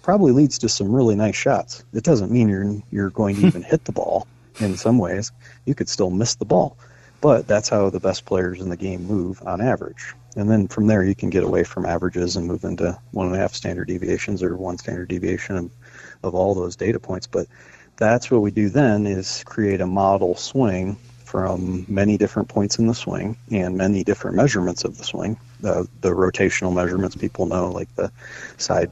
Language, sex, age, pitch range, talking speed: English, male, 40-59, 90-110 Hz, 205 wpm